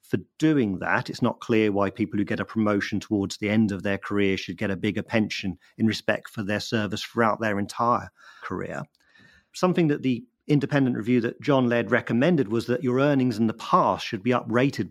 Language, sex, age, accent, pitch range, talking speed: English, male, 40-59, British, 110-130 Hz, 205 wpm